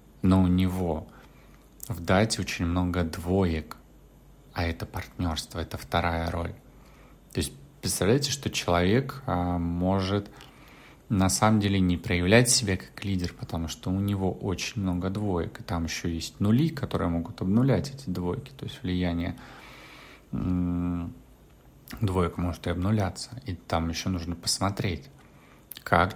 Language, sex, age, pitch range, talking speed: Russian, male, 30-49, 90-120 Hz, 135 wpm